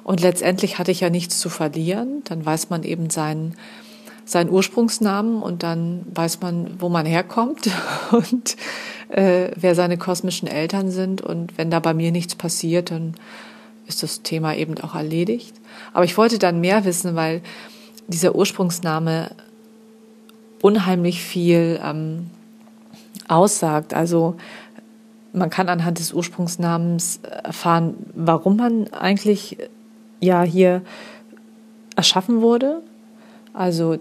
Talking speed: 125 wpm